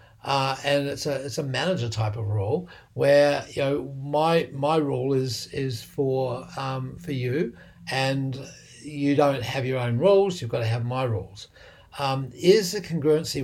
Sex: male